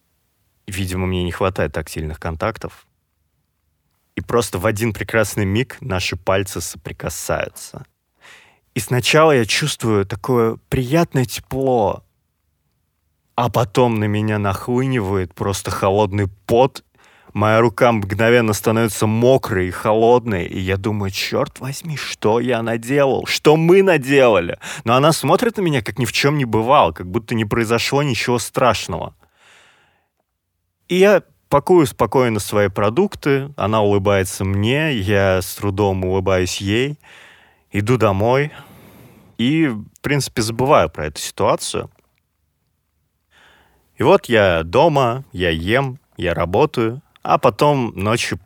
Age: 20-39